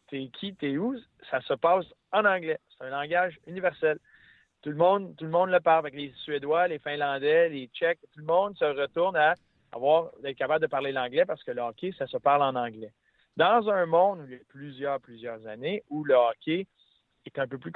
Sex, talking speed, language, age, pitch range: male, 225 wpm, French, 40-59, 135-180 Hz